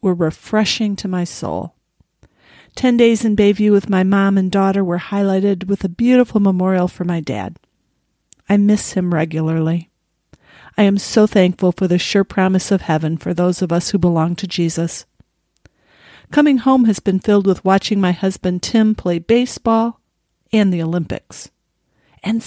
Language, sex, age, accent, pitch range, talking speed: English, female, 40-59, American, 180-225 Hz, 165 wpm